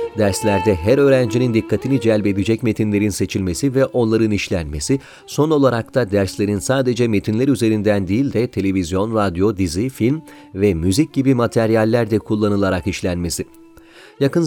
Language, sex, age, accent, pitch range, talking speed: Turkish, male, 40-59, native, 100-130 Hz, 130 wpm